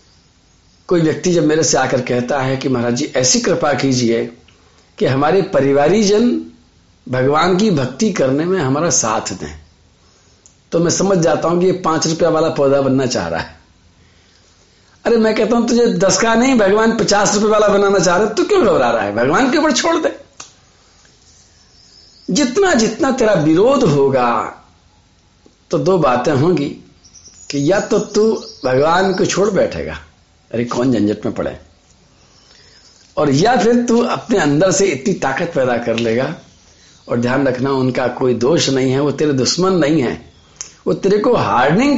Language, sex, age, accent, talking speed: Hindi, male, 50-69, native, 165 wpm